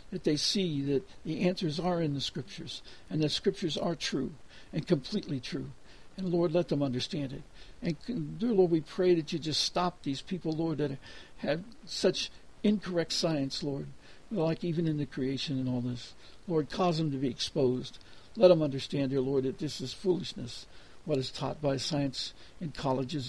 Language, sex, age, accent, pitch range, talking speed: English, male, 60-79, American, 135-170 Hz, 185 wpm